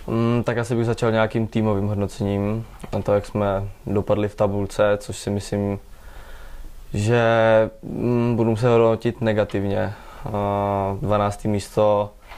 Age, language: 20-39, Czech